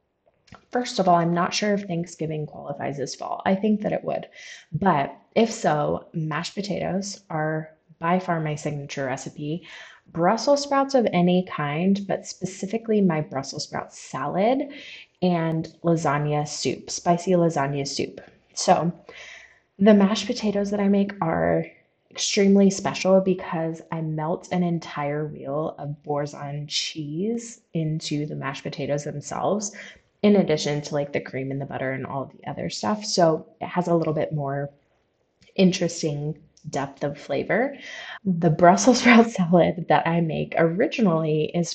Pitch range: 150-190 Hz